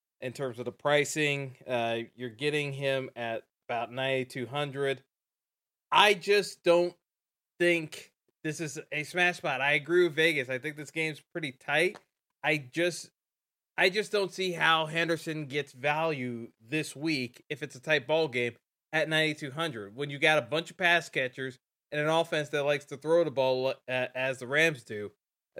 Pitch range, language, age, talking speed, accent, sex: 140-180 Hz, English, 20-39, 175 wpm, American, male